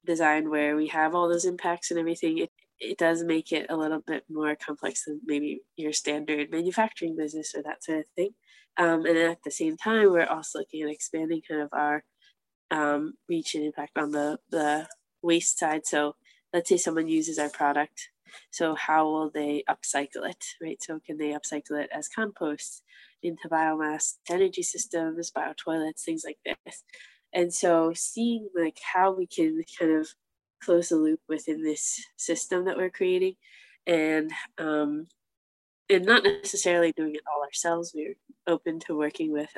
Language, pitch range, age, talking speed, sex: English, 155-175 Hz, 20-39, 175 wpm, female